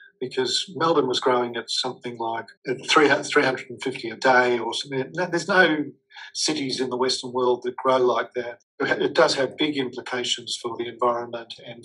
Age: 50-69